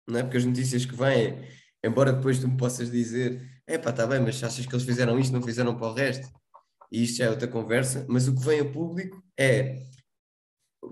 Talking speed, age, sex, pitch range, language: 225 wpm, 20-39, male, 125-150 Hz, Portuguese